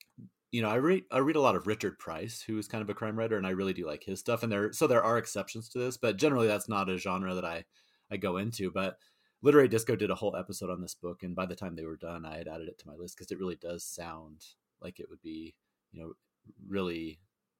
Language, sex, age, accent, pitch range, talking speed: English, male, 30-49, American, 90-110 Hz, 275 wpm